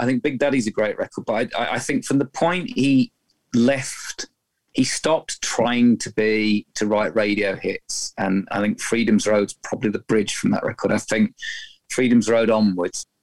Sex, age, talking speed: male, 30-49, 185 wpm